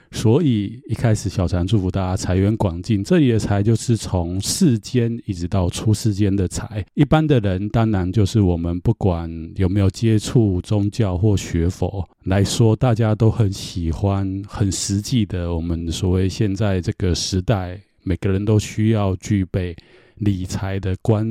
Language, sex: Chinese, male